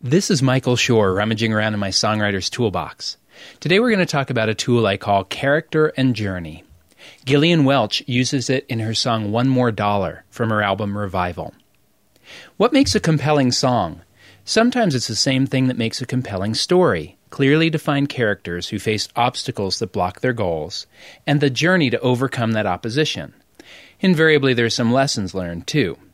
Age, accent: 30-49, American